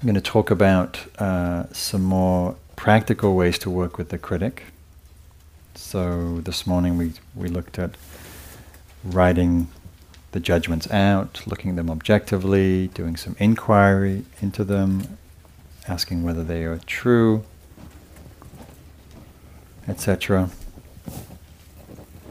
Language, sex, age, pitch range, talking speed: English, male, 40-59, 80-95 Hz, 110 wpm